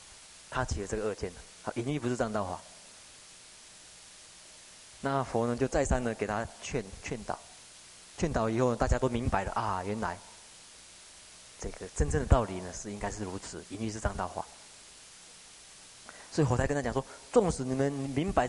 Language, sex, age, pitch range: Chinese, male, 20-39, 90-135 Hz